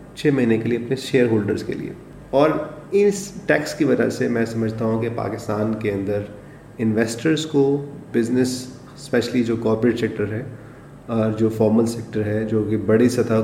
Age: 30-49